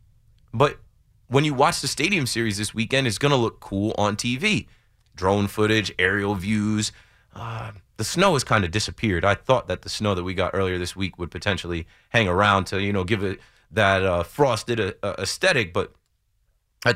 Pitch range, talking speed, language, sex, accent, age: 95-120 Hz, 190 wpm, English, male, American, 30-49